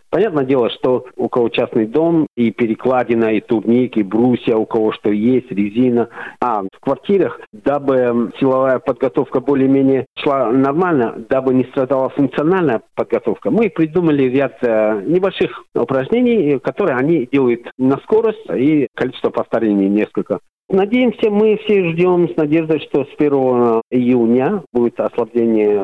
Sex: male